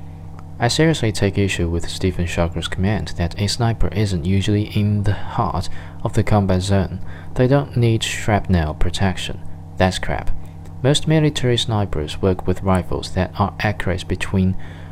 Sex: male